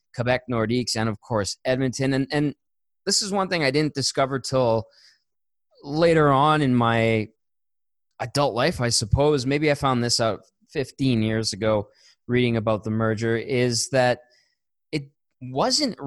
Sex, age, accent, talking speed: male, 20-39, American, 150 wpm